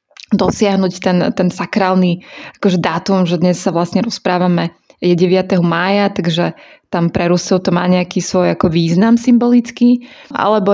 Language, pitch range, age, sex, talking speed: Slovak, 180-205 Hz, 20-39, female, 145 wpm